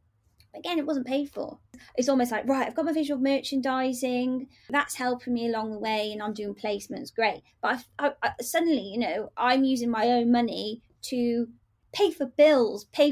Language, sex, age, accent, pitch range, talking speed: English, female, 20-39, British, 230-280 Hz, 180 wpm